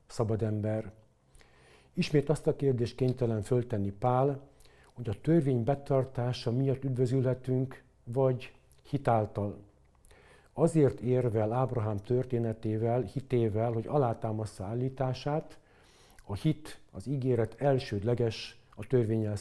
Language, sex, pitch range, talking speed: Hungarian, male, 110-130 Hz, 100 wpm